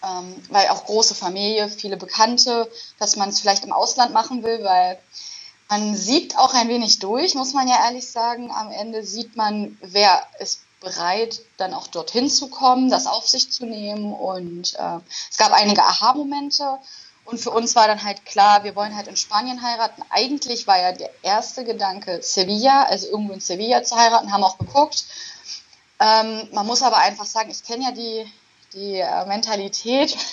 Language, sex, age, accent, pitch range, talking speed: German, female, 20-39, German, 200-250 Hz, 180 wpm